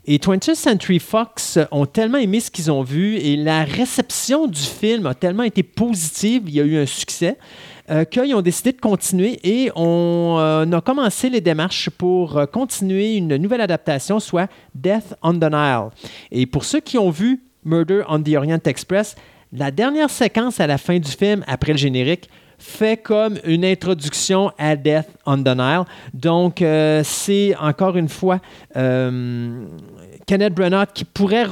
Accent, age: Canadian, 30-49